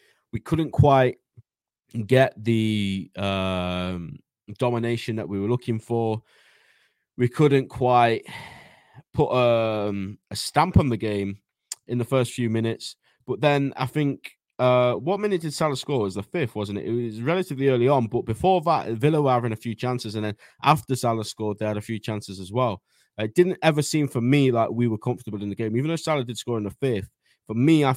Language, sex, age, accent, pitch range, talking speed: English, male, 20-39, British, 105-130 Hz, 200 wpm